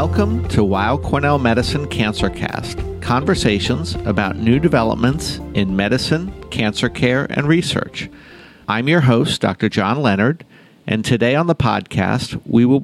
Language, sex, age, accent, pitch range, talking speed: English, male, 50-69, American, 110-140 Hz, 135 wpm